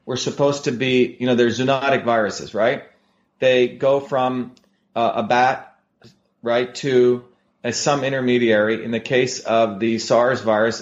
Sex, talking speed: male, 155 wpm